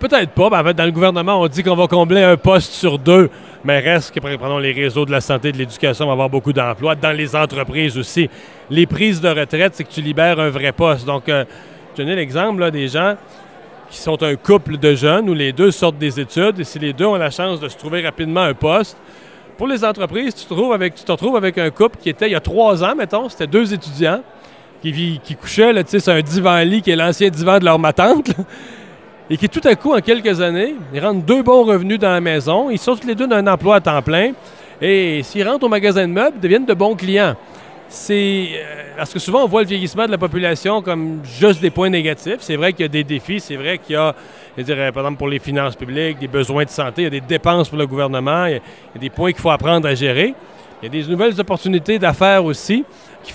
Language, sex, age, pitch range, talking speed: French, male, 40-59, 150-195 Hz, 255 wpm